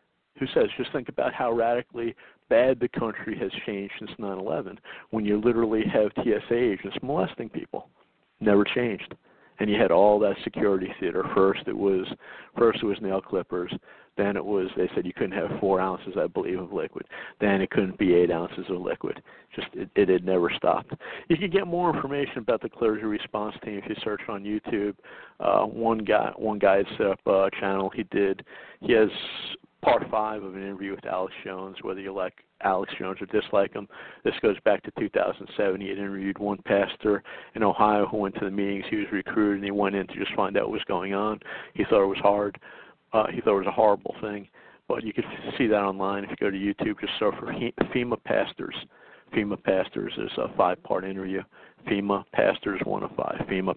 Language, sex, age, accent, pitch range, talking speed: English, male, 50-69, American, 95-110 Hz, 205 wpm